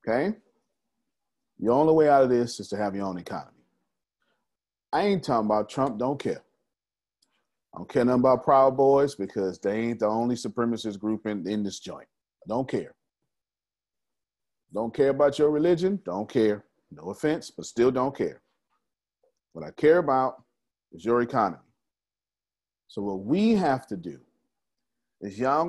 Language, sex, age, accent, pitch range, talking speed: English, male, 40-59, American, 105-175 Hz, 160 wpm